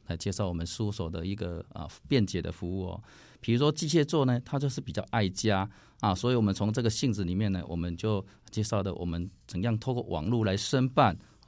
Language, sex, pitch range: Chinese, male, 95-120 Hz